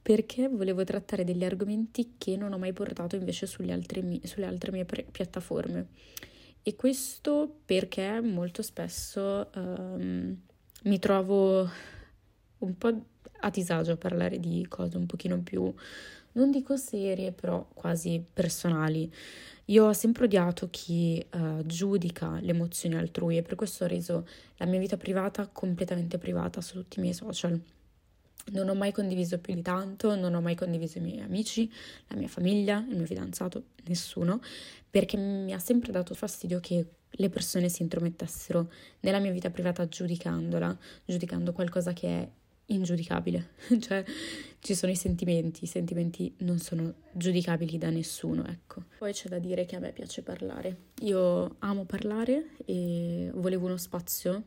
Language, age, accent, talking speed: Italian, 20-39, native, 150 wpm